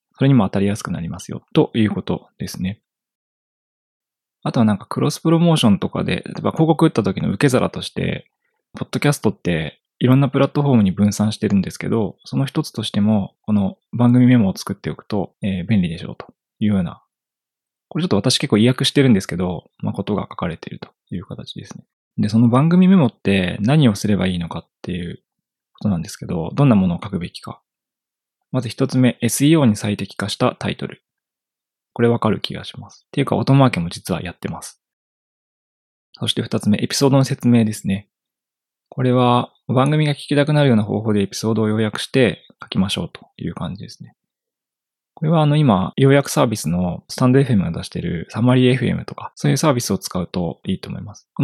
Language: Japanese